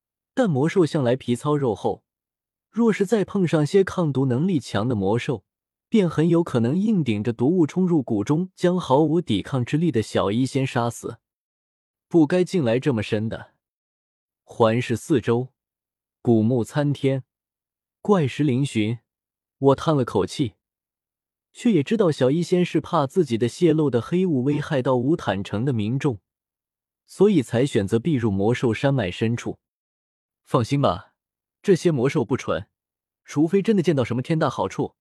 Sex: male